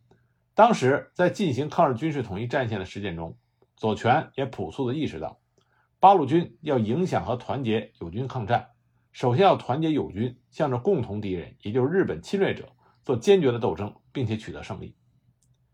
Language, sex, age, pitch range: Chinese, male, 50-69, 120-160 Hz